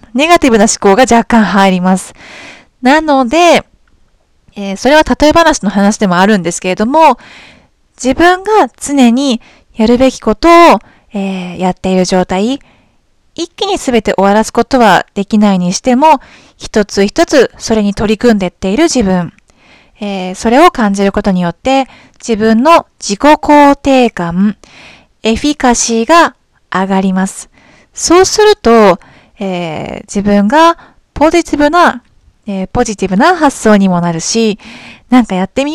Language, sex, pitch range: Japanese, female, 195-290 Hz